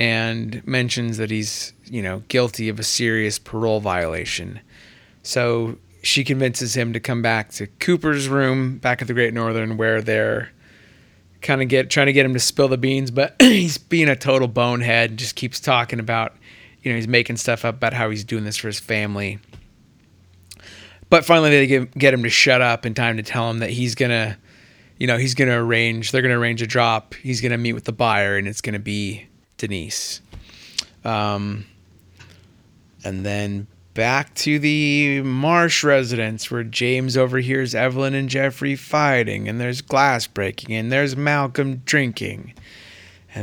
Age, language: 30-49, English